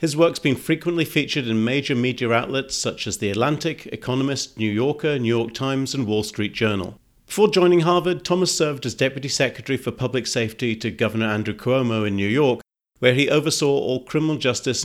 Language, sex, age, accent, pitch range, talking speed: English, male, 40-59, British, 110-140 Hz, 190 wpm